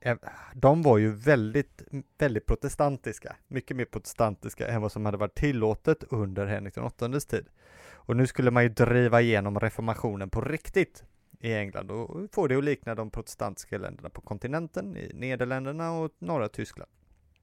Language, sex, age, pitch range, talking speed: Swedish, male, 30-49, 105-135 Hz, 160 wpm